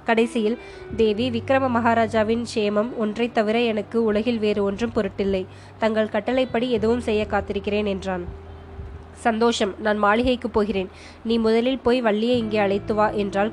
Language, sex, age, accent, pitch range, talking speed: Tamil, female, 20-39, native, 205-235 Hz, 135 wpm